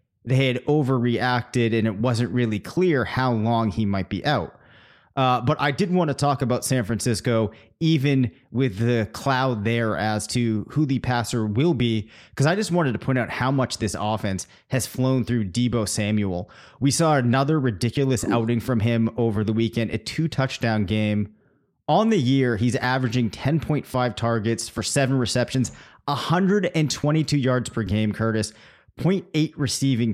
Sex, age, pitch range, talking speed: male, 30-49, 110-135 Hz, 165 wpm